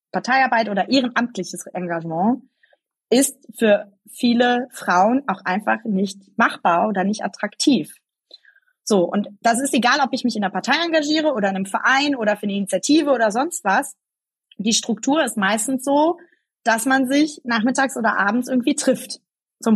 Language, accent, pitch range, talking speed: German, German, 205-270 Hz, 160 wpm